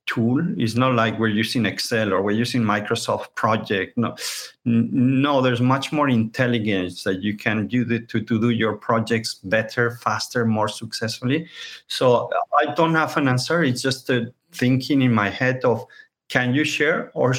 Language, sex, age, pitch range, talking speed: English, male, 50-69, 110-125 Hz, 175 wpm